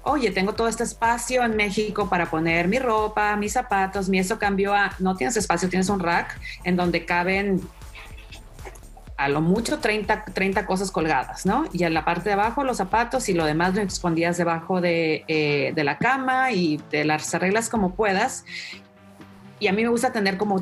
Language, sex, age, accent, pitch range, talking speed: Spanish, female, 40-59, Mexican, 165-200 Hz, 190 wpm